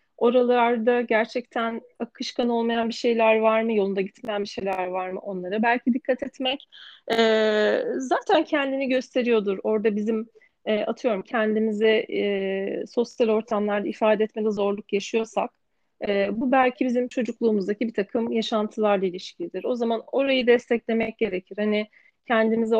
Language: Turkish